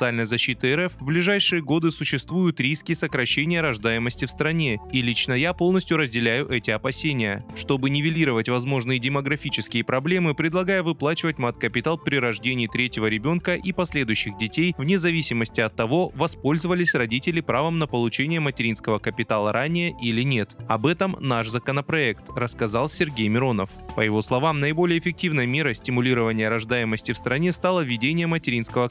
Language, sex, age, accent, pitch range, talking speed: Russian, male, 20-39, native, 115-165 Hz, 140 wpm